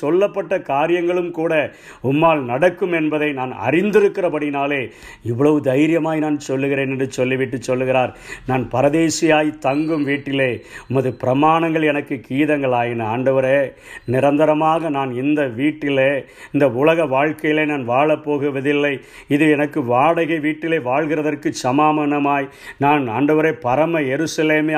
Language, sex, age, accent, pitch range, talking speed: Tamil, male, 50-69, native, 130-165 Hz, 105 wpm